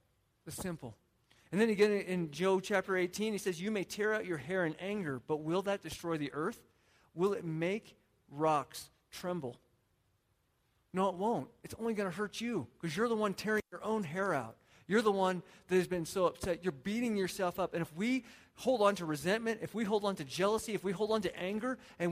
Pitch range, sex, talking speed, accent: 155-220 Hz, male, 215 wpm, American